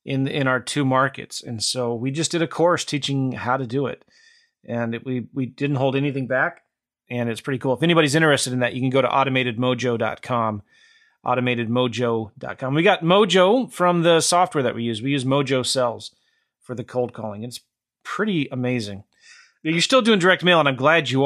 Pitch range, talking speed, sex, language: 125-155 Hz, 195 wpm, male, English